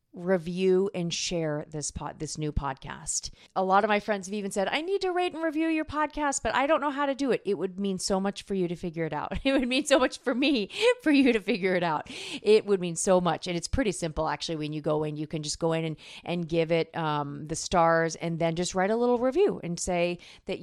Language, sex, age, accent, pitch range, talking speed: English, female, 40-59, American, 160-205 Hz, 270 wpm